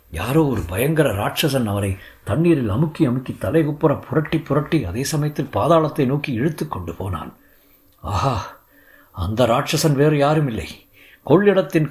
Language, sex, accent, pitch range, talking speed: Tamil, male, native, 110-150 Hz, 125 wpm